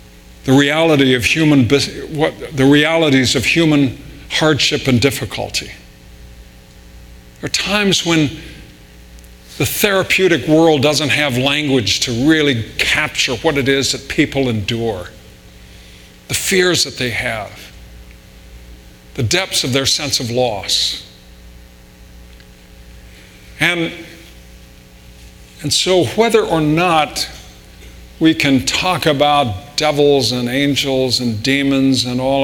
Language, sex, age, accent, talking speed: English, male, 50-69, American, 110 wpm